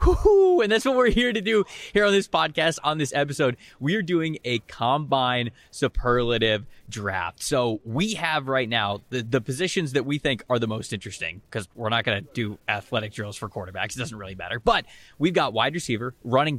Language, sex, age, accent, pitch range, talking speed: English, male, 20-39, American, 110-155 Hz, 205 wpm